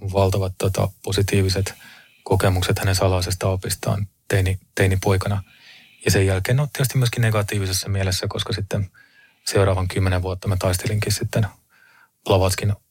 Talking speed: 125 wpm